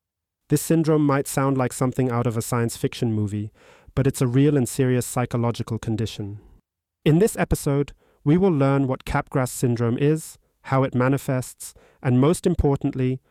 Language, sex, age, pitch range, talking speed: English, male, 30-49, 115-140 Hz, 160 wpm